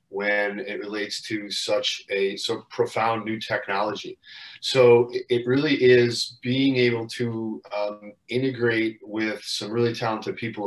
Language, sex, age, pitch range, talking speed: English, male, 30-49, 105-125 Hz, 140 wpm